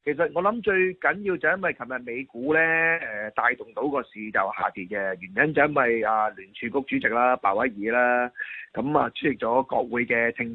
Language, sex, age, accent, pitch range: Chinese, male, 30-49, native, 120-155 Hz